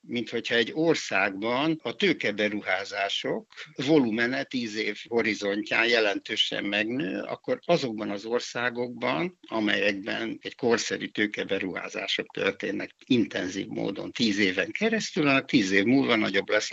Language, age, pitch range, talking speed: Hungarian, 60-79, 110-170 Hz, 115 wpm